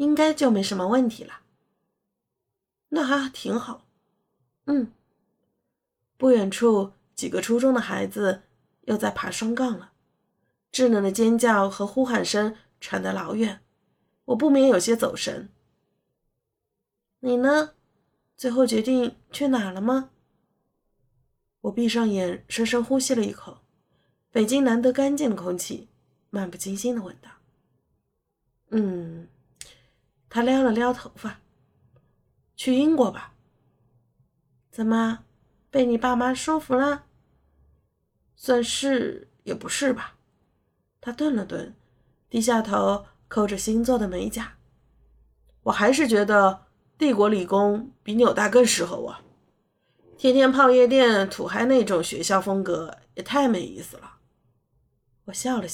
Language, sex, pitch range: Chinese, female, 190-255 Hz